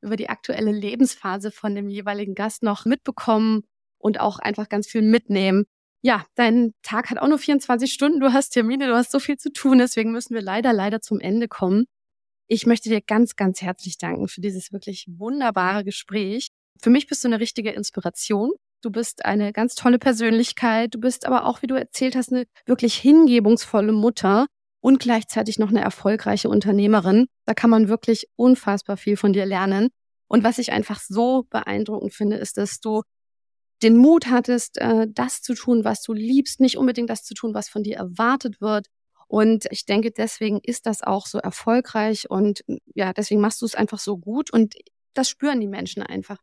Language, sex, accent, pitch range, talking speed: German, female, German, 205-245 Hz, 190 wpm